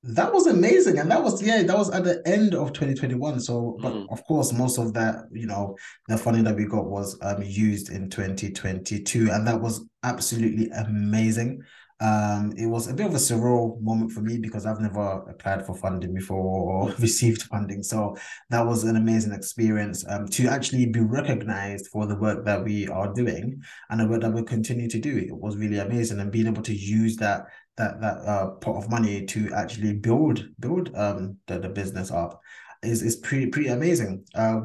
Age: 20-39